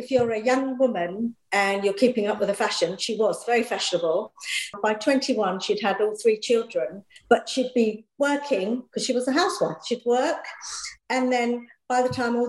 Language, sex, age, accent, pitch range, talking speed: English, female, 50-69, British, 210-265 Hz, 190 wpm